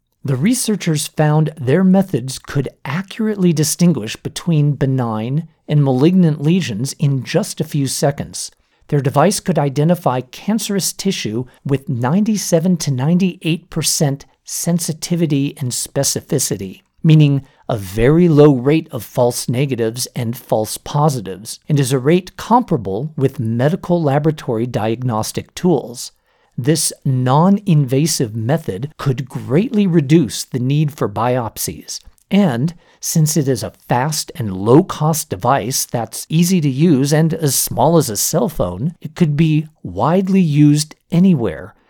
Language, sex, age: English, male, 50-69